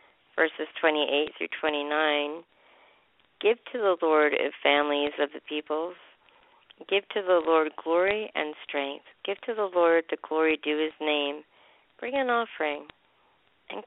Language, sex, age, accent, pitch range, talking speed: English, female, 40-59, American, 150-195 Hz, 145 wpm